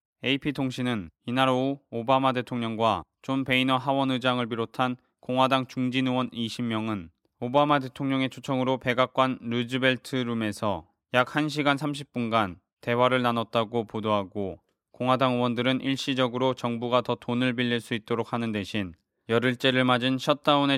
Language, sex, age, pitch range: Korean, male, 20-39, 115-135 Hz